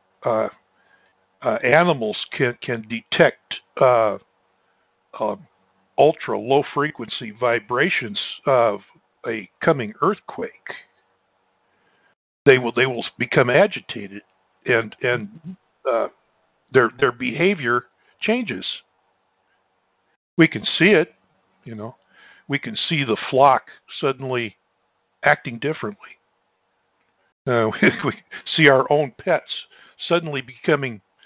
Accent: American